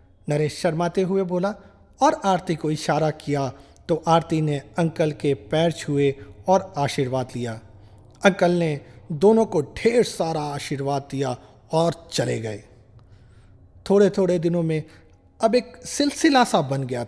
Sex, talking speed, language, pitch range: male, 140 wpm, Hindi, 120-180 Hz